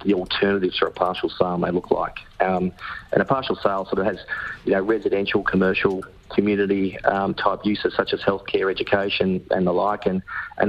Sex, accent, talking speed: male, Australian, 190 wpm